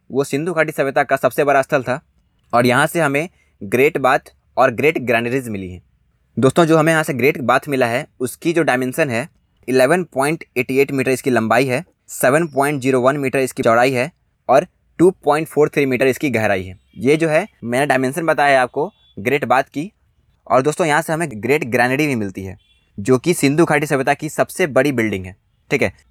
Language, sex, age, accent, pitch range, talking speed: Hindi, male, 20-39, native, 125-155 Hz, 210 wpm